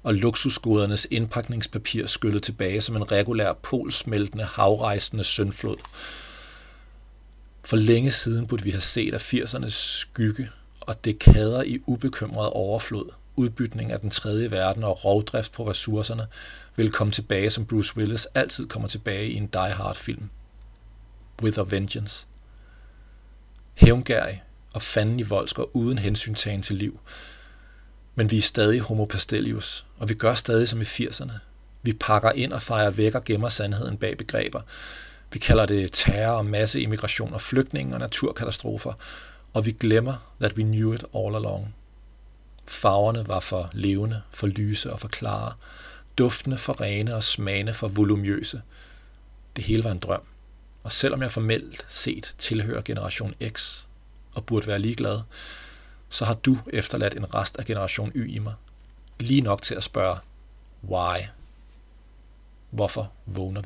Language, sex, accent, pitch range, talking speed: Danish, male, native, 105-115 Hz, 145 wpm